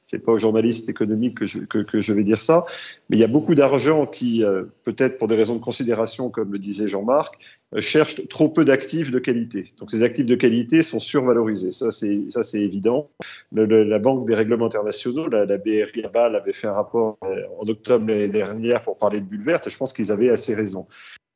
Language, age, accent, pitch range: French, 40-59, French, 110-140 Hz